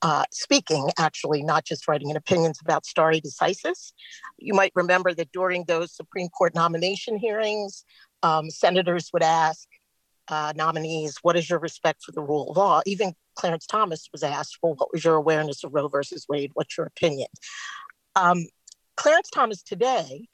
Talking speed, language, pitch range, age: 170 wpm, English, 160-195 Hz, 50-69